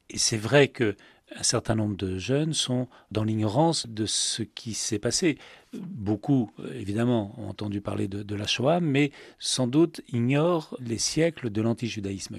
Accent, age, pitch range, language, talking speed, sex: French, 40-59, 105-130 Hz, French, 160 wpm, male